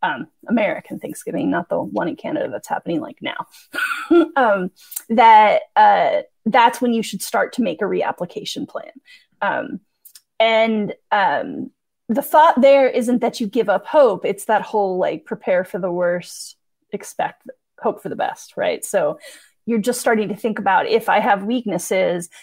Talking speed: 165 wpm